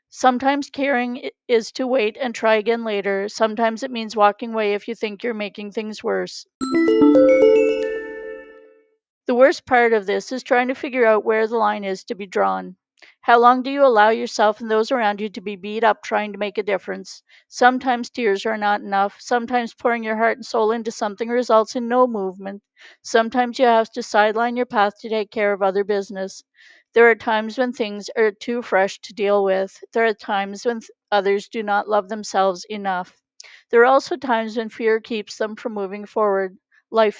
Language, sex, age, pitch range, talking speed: English, female, 40-59, 205-245 Hz, 195 wpm